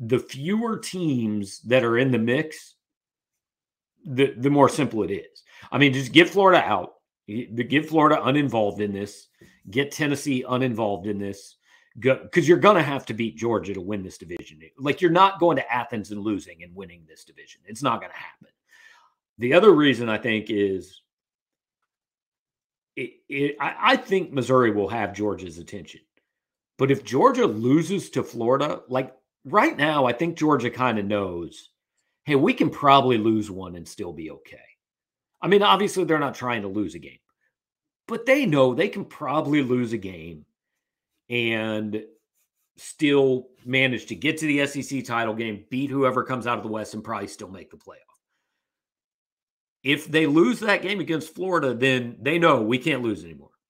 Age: 40-59